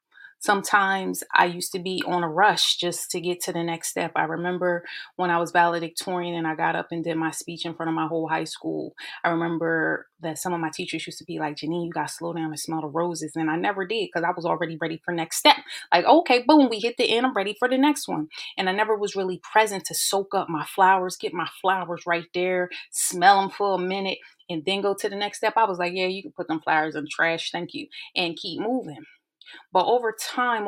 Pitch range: 165-195 Hz